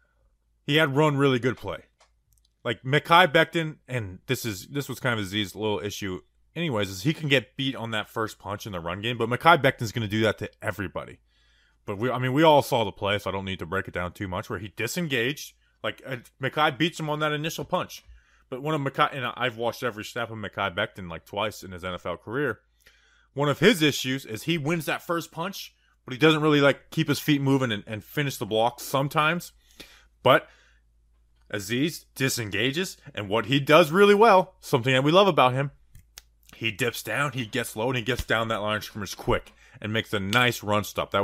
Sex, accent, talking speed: male, American, 220 wpm